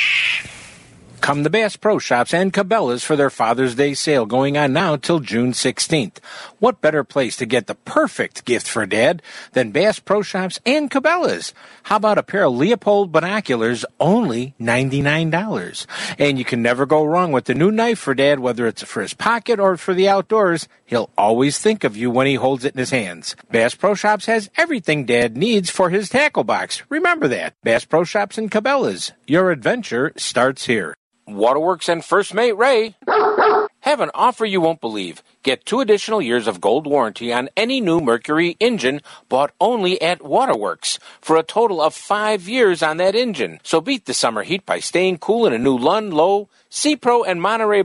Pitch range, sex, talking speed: 140-225 Hz, male, 190 wpm